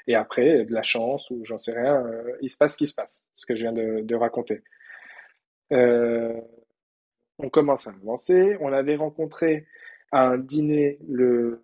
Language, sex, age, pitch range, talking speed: French, male, 20-39, 115-135 Hz, 180 wpm